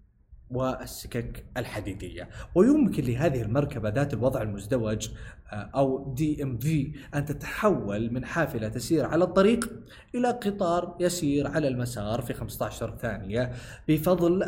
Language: Arabic